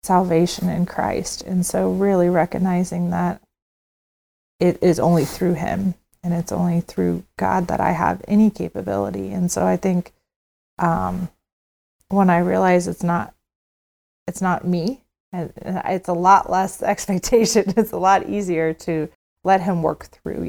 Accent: American